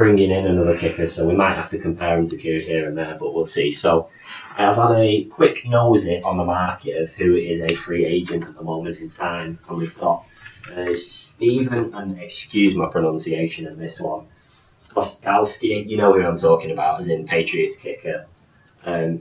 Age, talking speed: 20-39, 195 wpm